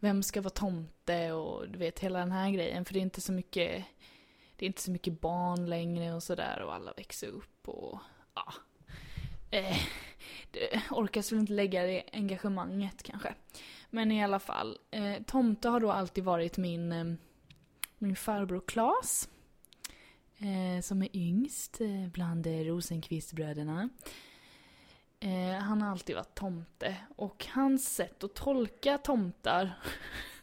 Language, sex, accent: Swedish, female, native